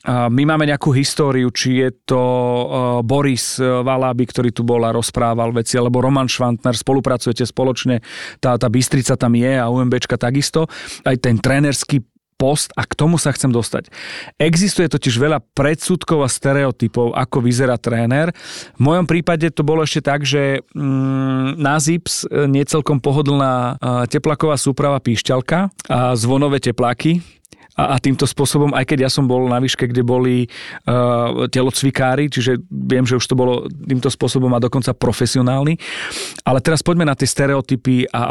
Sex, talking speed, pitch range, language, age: male, 150 wpm, 125-145 Hz, Slovak, 40-59